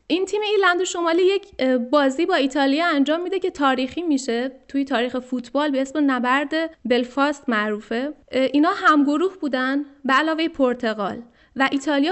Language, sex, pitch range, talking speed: Persian, female, 255-310 Hz, 145 wpm